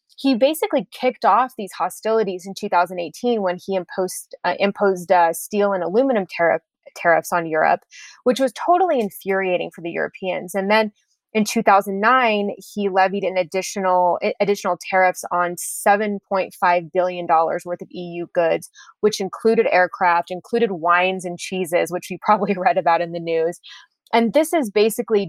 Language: English